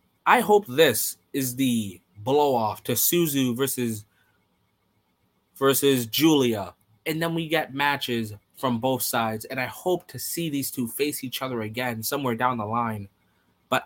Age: 20-39